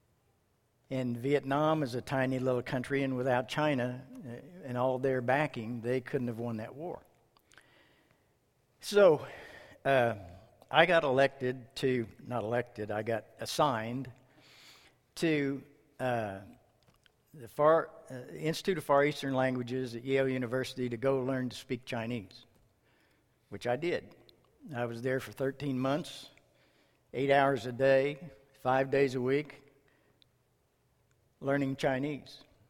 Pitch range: 120-140 Hz